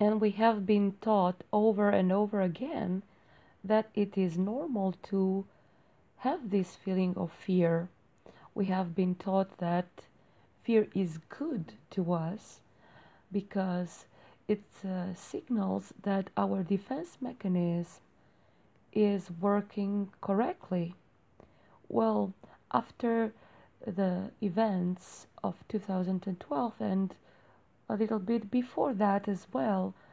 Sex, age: female, 30-49